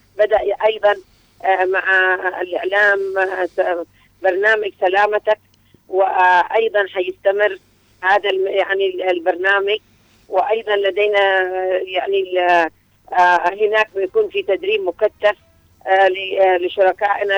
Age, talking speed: 50-69, 70 wpm